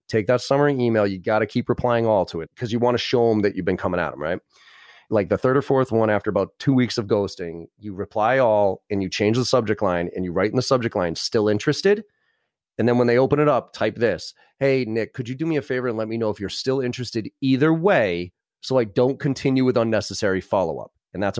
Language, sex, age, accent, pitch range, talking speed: English, male, 30-49, American, 100-130 Hz, 255 wpm